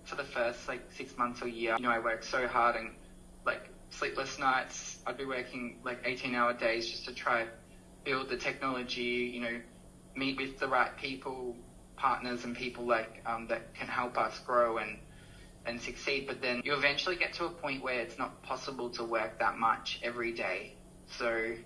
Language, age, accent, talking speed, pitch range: English, 20-39, Australian, 190 wpm, 115-130 Hz